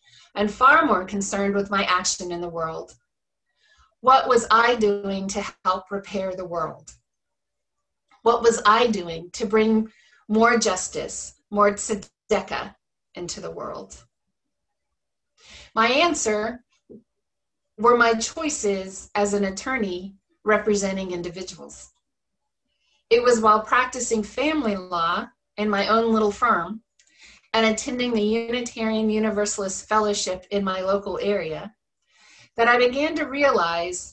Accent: American